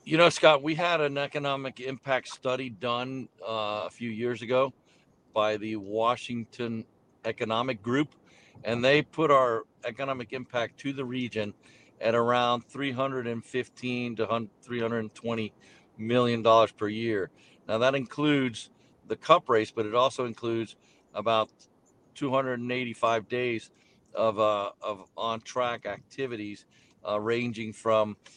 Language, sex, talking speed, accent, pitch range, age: English, male, 125 wpm, American, 110-125 Hz, 50-69